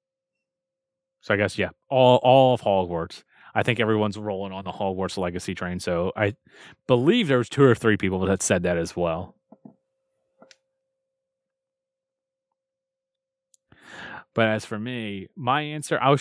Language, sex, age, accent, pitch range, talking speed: English, male, 30-49, American, 90-130 Hz, 140 wpm